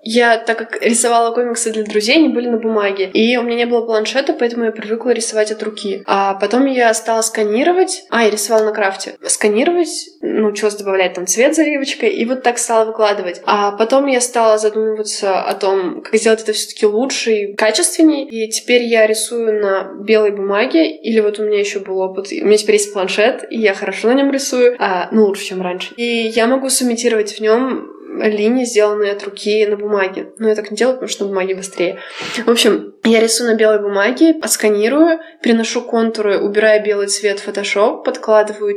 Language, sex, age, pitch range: Russian, female, 20-39, 205-245 Hz